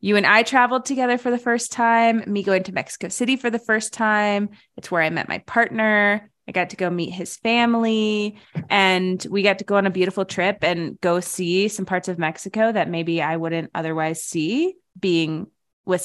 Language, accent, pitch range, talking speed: English, American, 175-225 Hz, 205 wpm